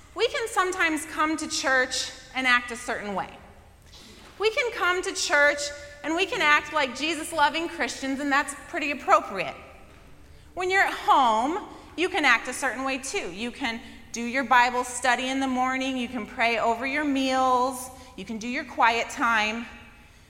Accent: American